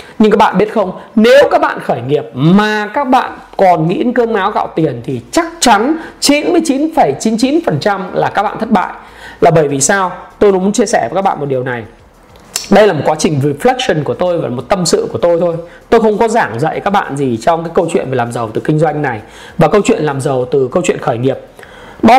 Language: Vietnamese